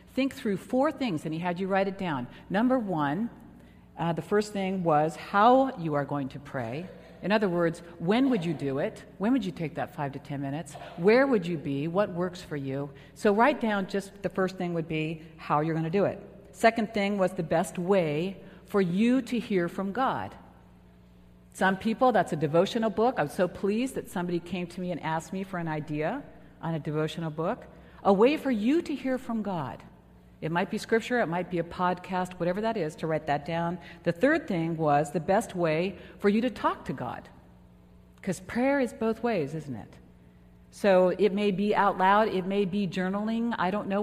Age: 50-69